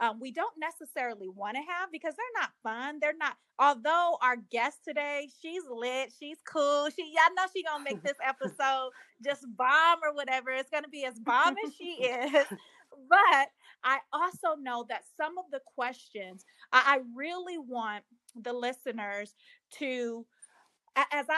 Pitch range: 230-300 Hz